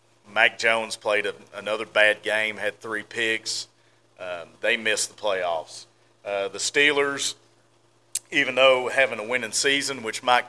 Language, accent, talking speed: English, American, 150 wpm